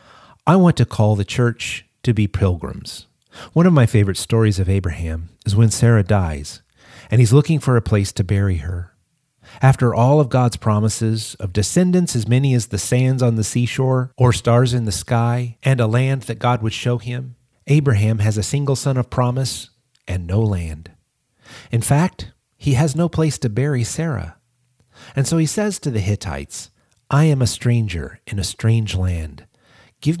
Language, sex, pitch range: English, male, 105-135 Hz